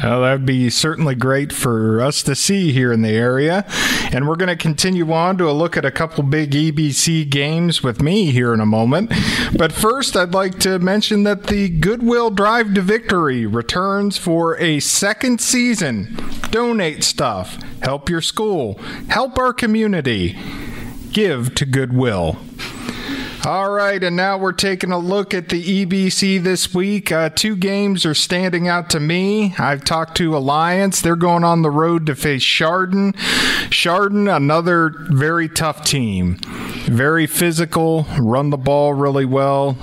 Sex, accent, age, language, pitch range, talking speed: male, American, 40-59, English, 125-175 Hz, 160 wpm